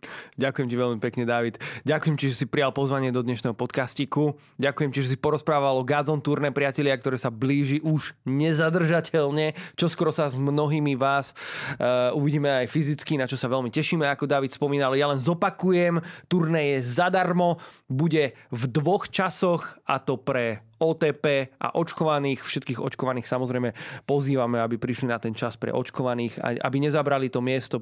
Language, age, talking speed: Slovak, 20-39, 160 wpm